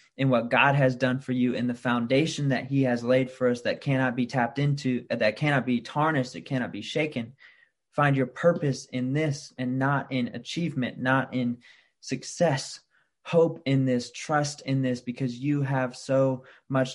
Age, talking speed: 20-39, 185 wpm